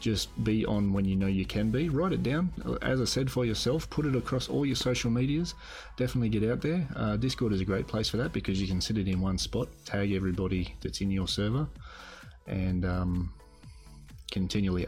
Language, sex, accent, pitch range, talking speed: English, male, Australian, 95-115 Hz, 215 wpm